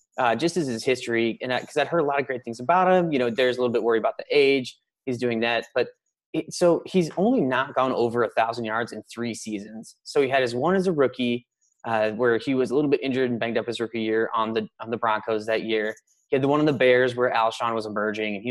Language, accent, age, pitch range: English, American, 20-39, 115-150 Hz